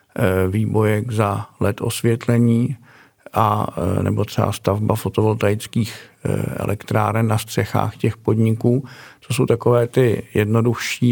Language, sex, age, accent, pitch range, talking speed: Czech, male, 50-69, native, 110-120 Hz, 105 wpm